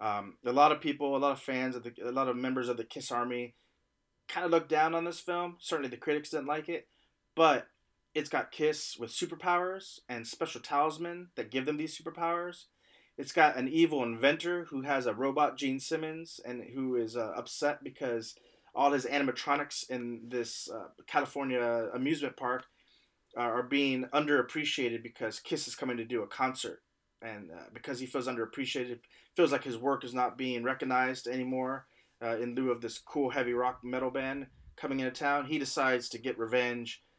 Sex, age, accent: male, 30-49, American